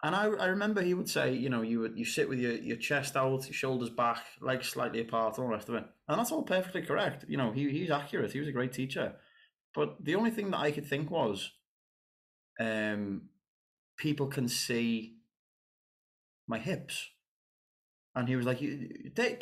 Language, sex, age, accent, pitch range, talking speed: English, male, 20-39, British, 115-155 Hz, 200 wpm